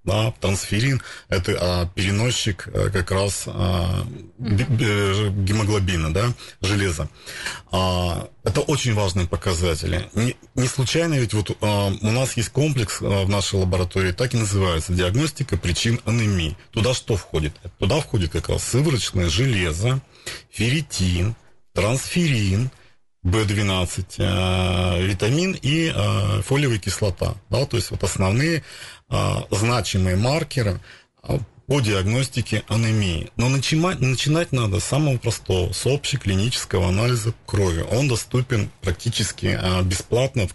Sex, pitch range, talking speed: male, 95-120 Hz, 100 wpm